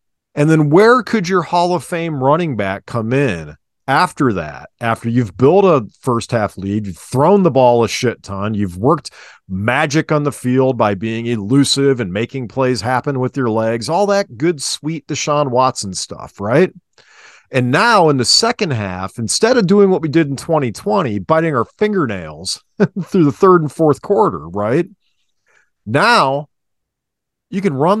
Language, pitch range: English, 115-165 Hz